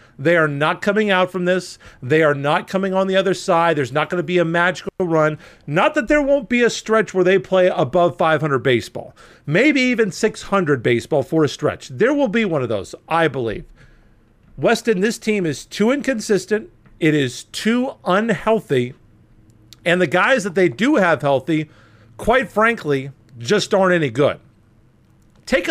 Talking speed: 175 wpm